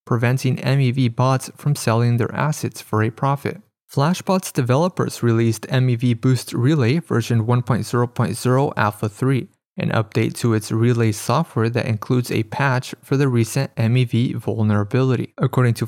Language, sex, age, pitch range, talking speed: English, male, 30-49, 115-135 Hz, 140 wpm